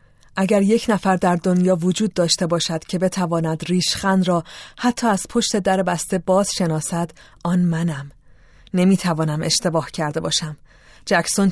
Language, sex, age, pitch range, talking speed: Persian, female, 30-49, 170-200 Hz, 135 wpm